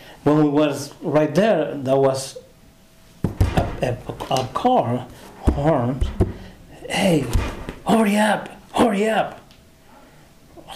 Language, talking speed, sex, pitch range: English, 100 wpm, male, 130-175 Hz